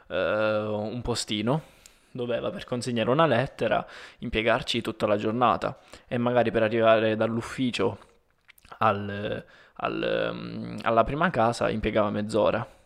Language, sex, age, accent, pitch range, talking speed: Italian, male, 20-39, native, 115-140 Hz, 100 wpm